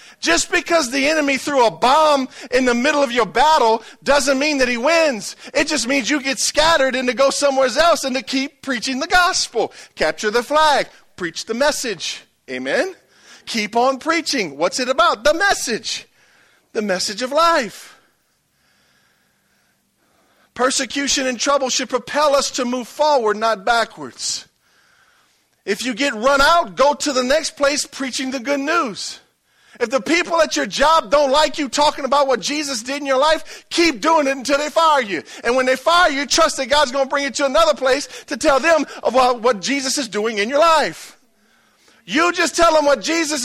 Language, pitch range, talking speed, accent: English, 250-300 Hz, 185 wpm, American